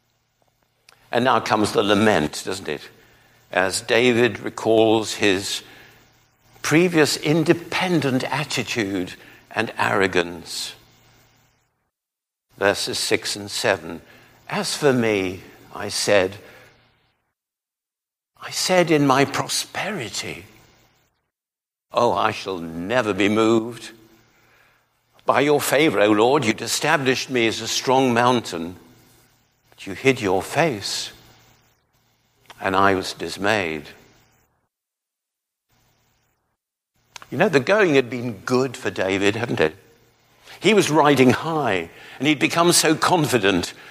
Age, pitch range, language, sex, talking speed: 60-79, 110-135 Hz, English, male, 105 wpm